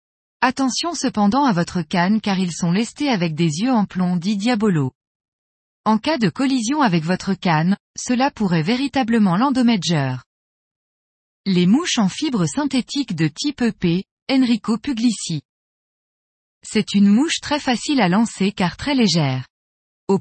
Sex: female